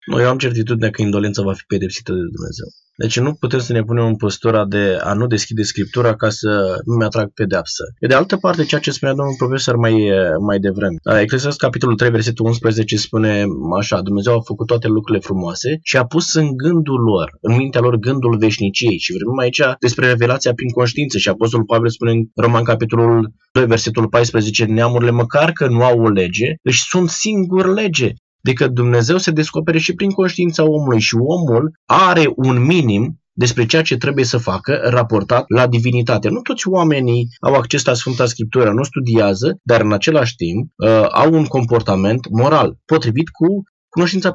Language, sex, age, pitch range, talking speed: Romanian, male, 20-39, 115-150 Hz, 185 wpm